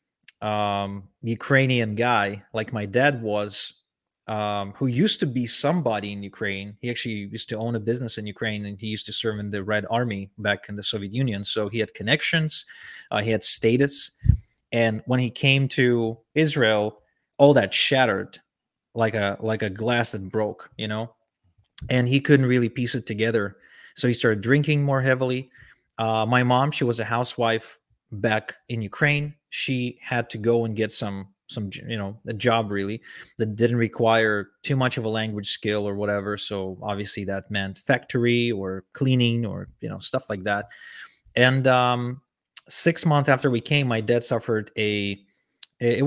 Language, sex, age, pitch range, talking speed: English, male, 20-39, 105-125 Hz, 175 wpm